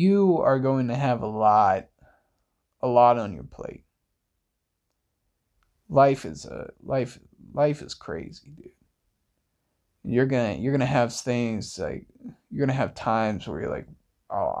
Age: 20-39